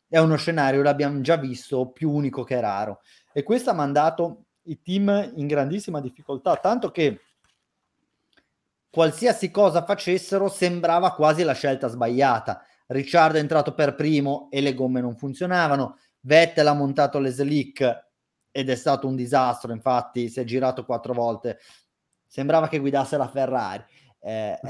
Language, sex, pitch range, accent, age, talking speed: Italian, male, 130-160 Hz, native, 30-49, 150 wpm